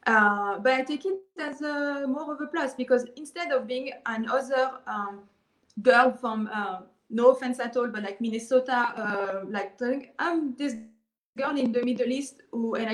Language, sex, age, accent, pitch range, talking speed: English, female, 20-39, French, 210-255 Hz, 175 wpm